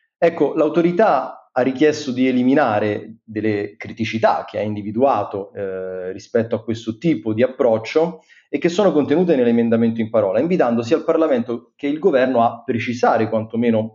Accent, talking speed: native, 150 wpm